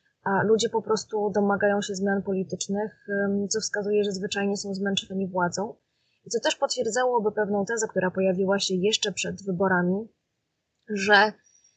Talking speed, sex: 145 wpm, female